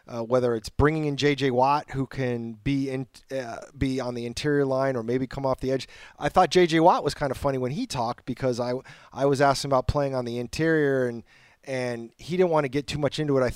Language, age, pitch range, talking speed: English, 30-49, 115-145 Hz, 250 wpm